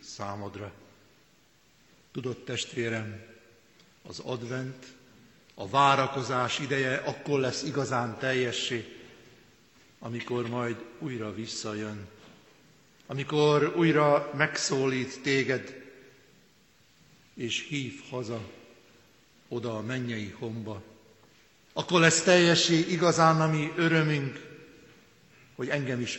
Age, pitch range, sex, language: 60-79, 115-140 Hz, male, Hungarian